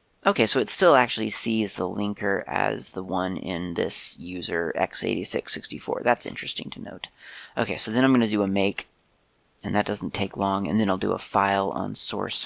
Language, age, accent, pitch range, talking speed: English, 30-49, American, 95-115 Hz, 195 wpm